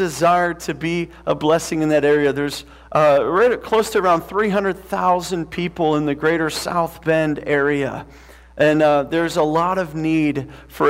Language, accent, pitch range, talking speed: English, American, 145-175 Hz, 160 wpm